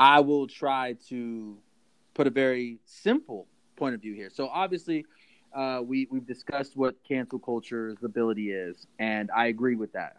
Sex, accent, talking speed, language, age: male, American, 165 wpm, English, 30-49